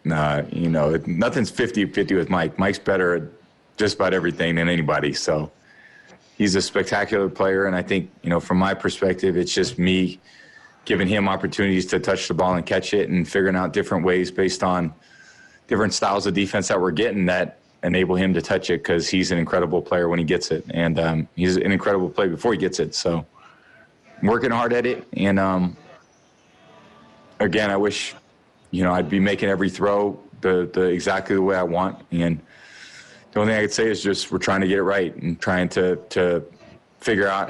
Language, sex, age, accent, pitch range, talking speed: English, male, 20-39, American, 90-105 Hz, 200 wpm